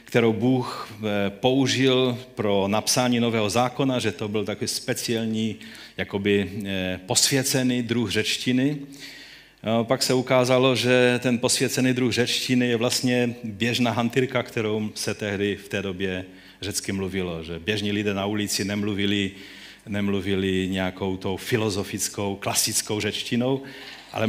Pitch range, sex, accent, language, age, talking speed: 95-115 Hz, male, native, Czech, 40-59, 120 wpm